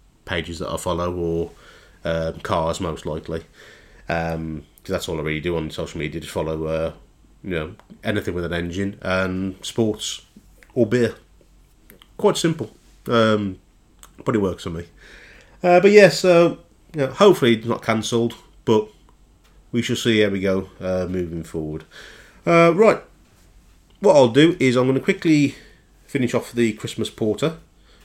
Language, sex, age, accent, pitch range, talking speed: English, male, 30-49, British, 95-150 Hz, 165 wpm